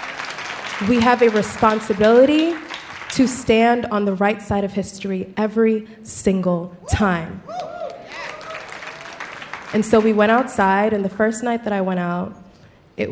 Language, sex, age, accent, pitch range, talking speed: English, female, 20-39, American, 185-210 Hz, 135 wpm